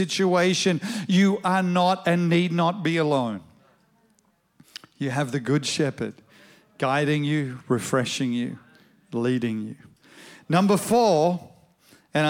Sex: male